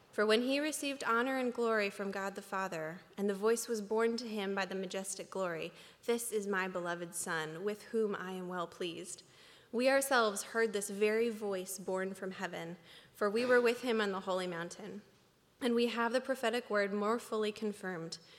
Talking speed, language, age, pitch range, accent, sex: 195 wpm, English, 20-39, 195-225 Hz, American, female